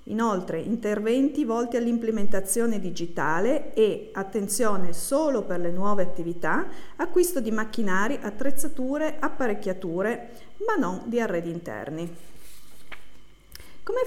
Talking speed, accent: 100 wpm, native